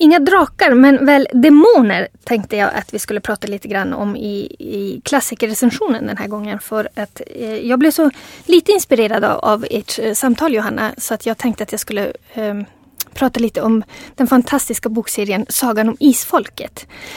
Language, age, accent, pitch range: Swedish, 30-49, native, 215-265 Hz